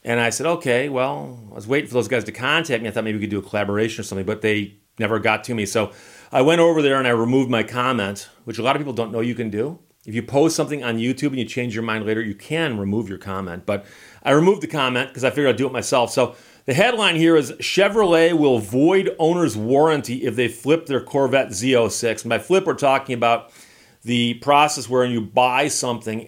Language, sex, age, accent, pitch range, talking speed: English, male, 40-59, American, 110-135 Hz, 245 wpm